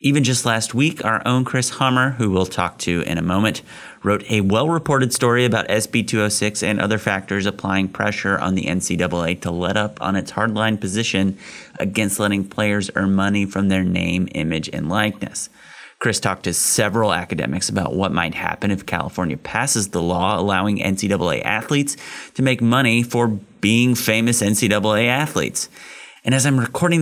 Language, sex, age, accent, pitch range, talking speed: English, male, 30-49, American, 95-120 Hz, 170 wpm